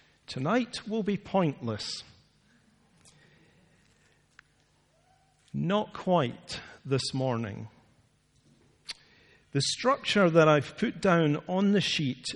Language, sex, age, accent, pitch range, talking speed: English, male, 50-69, British, 120-160 Hz, 85 wpm